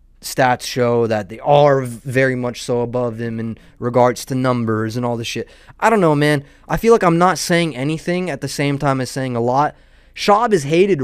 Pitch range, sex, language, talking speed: 120-160 Hz, male, English, 215 wpm